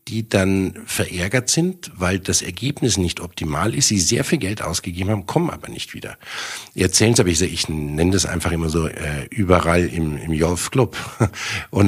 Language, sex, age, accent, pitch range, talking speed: German, male, 50-69, German, 85-110 Hz, 185 wpm